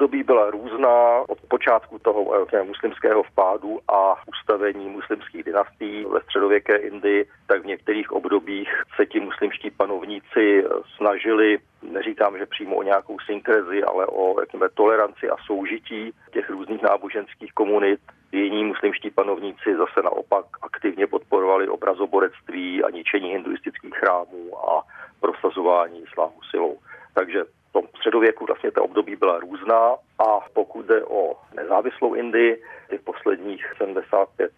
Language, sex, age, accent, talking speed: Czech, male, 40-59, native, 125 wpm